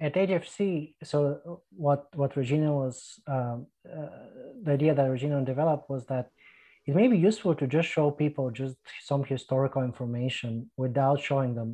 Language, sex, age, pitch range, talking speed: English, male, 30-49, 125-150 Hz, 160 wpm